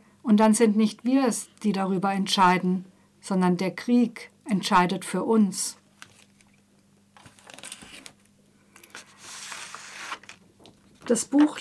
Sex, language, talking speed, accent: female, German, 90 wpm, German